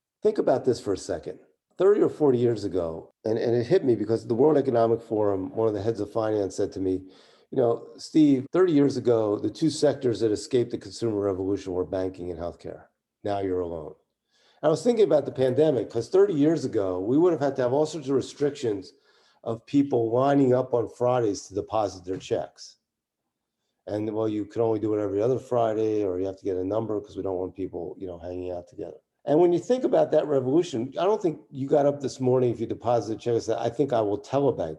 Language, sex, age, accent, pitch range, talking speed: English, male, 40-59, American, 95-140 Hz, 235 wpm